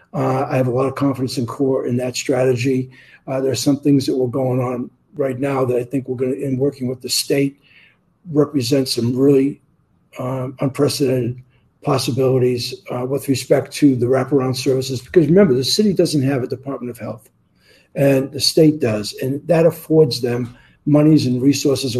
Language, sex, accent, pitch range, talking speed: English, male, American, 125-145 Hz, 185 wpm